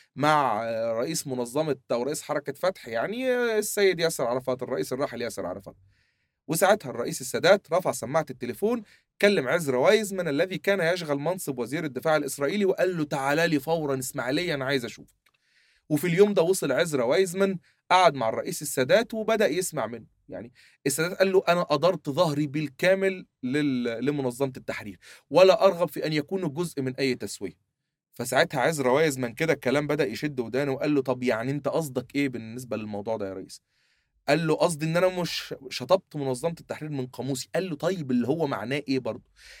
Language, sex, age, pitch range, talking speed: Arabic, male, 30-49, 135-185 Hz, 170 wpm